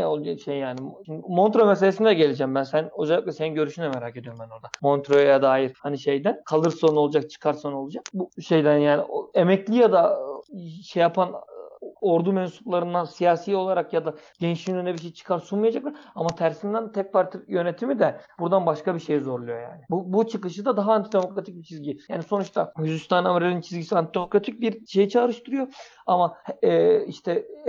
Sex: male